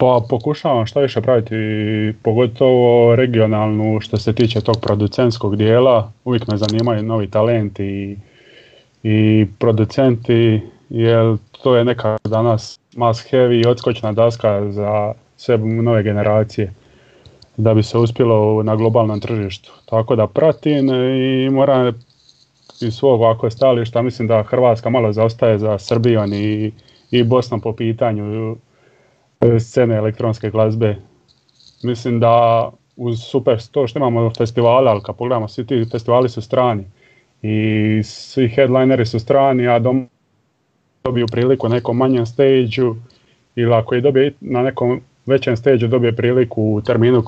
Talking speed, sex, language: 140 wpm, male, Croatian